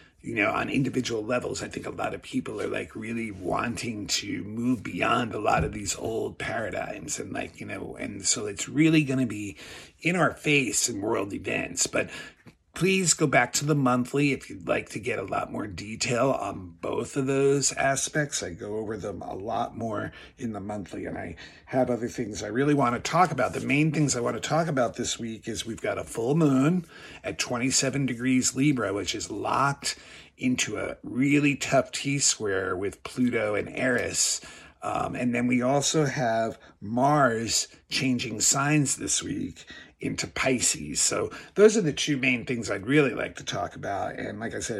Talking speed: 195 wpm